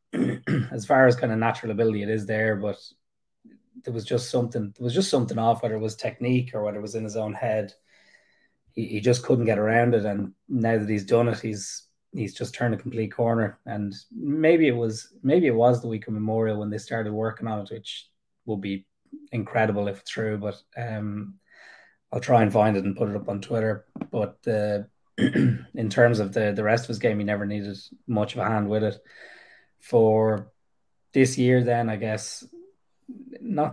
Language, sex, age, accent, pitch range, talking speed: English, male, 20-39, Irish, 105-120 Hz, 205 wpm